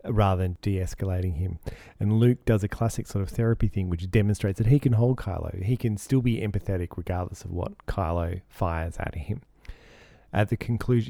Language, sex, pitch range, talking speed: English, male, 95-115 Hz, 190 wpm